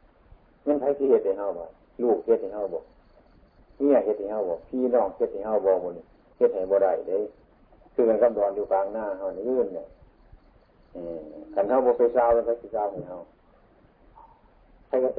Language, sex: Thai, male